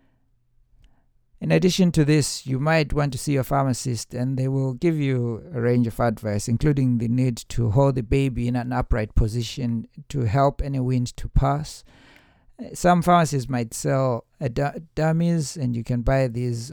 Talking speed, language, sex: 170 wpm, English, male